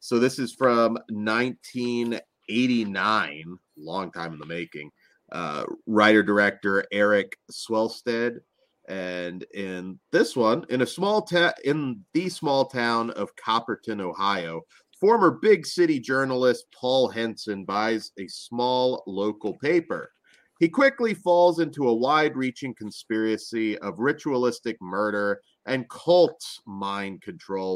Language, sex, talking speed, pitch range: English, male, 120 wpm, 100-140 Hz